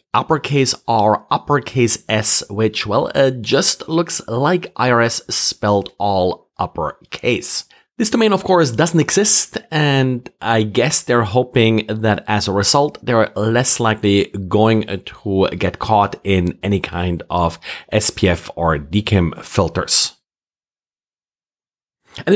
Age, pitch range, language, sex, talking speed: 30-49, 100-135 Hz, English, male, 120 wpm